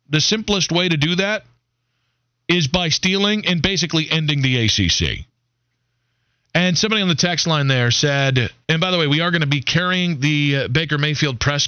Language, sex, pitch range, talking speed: English, male, 125-175 Hz, 185 wpm